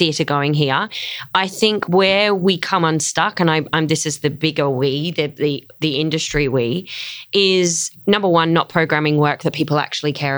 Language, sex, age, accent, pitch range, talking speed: English, female, 20-39, Australian, 150-170 Hz, 180 wpm